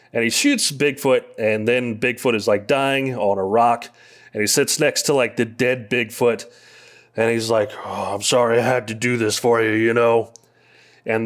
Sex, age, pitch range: male, 30-49, 115-160 Hz